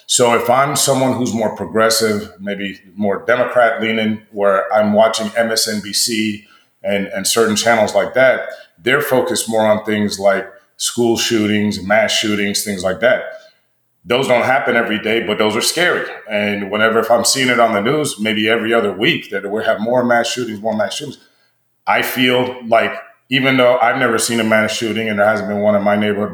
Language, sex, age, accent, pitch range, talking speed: English, male, 30-49, American, 105-120 Hz, 190 wpm